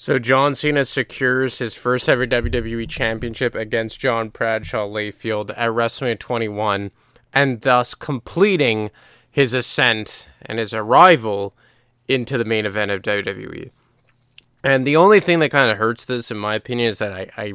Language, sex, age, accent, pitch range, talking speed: English, male, 20-39, American, 105-125 Hz, 155 wpm